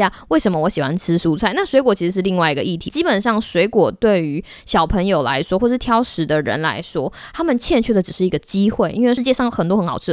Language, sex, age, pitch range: Chinese, female, 20-39, 170-245 Hz